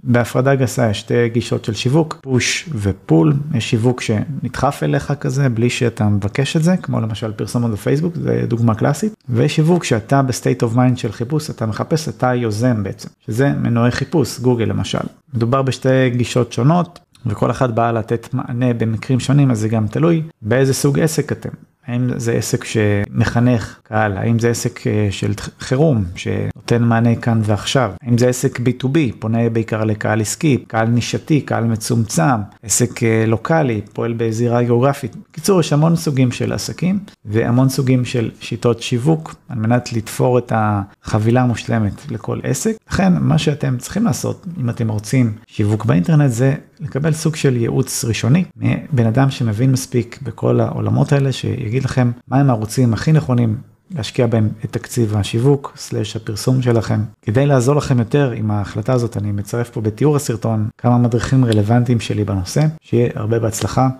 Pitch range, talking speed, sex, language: 115-135 Hz, 160 wpm, male, Hebrew